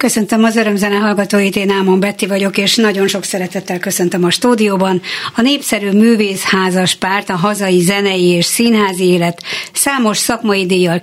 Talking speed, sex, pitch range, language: 160 wpm, female, 175-205 Hz, Hungarian